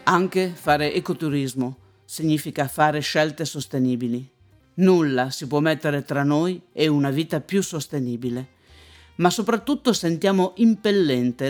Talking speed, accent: 115 wpm, native